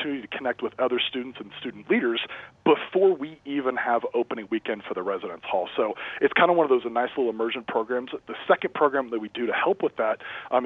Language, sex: English, male